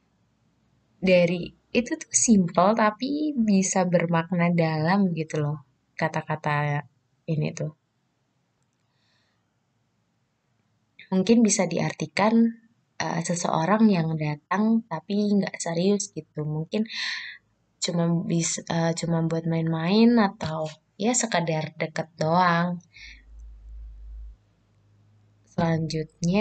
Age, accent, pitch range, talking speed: 20-39, native, 160-195 Hz, 85 wpm